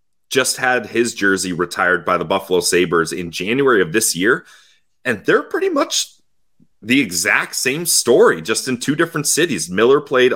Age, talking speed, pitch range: 30-49, 170 wpm, 105-155 Hz